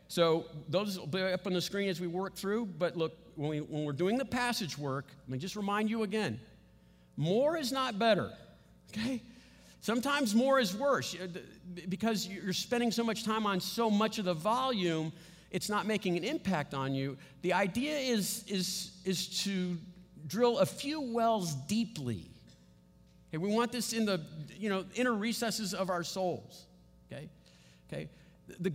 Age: 50-69